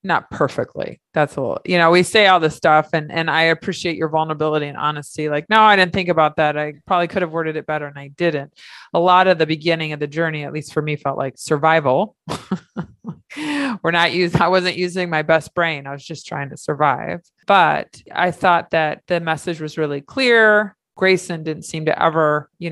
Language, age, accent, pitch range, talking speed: English, 20-39, American, 155-180 Hz, 215 wpm